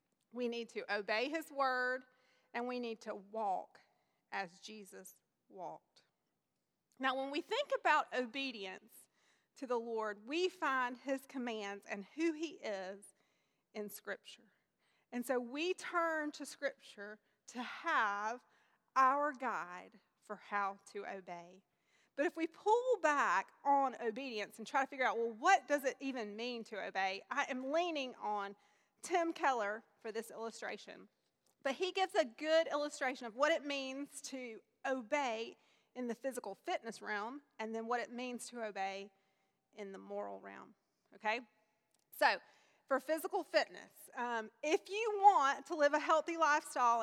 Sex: female